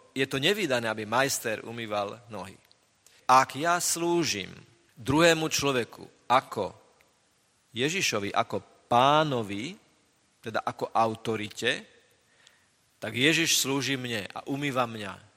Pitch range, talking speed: 110-145 Hz, 100 wpm